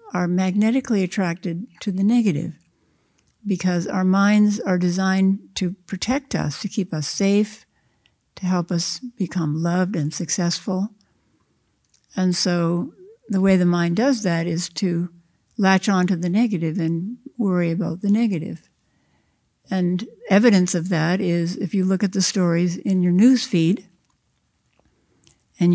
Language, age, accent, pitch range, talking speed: English, 60-79, American, 175-200 Hz, 140 wpm